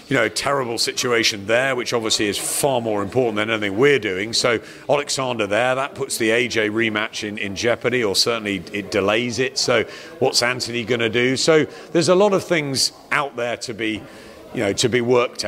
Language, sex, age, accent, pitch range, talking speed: English, male, 40-59, British, 110-140 Hz, 200 wpm